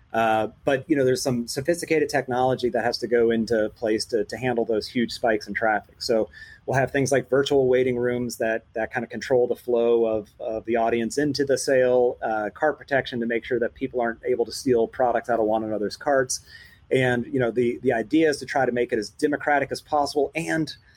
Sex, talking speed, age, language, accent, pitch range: male, 225 wpm, 30-49, English, American, 115-140 Hz